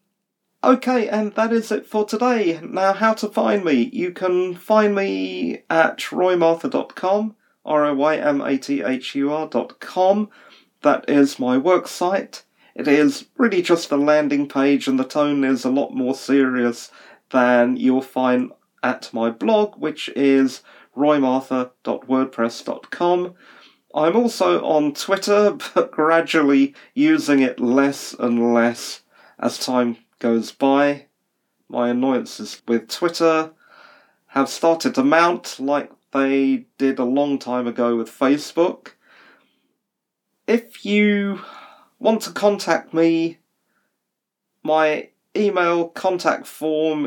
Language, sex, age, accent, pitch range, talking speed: English, male, 40-59, British, 135-205 Hz, 115 wpm